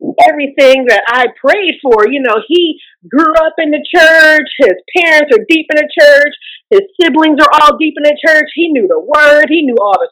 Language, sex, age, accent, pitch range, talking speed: English, female, 30-49, American, 245-350 Hz, 215 wpm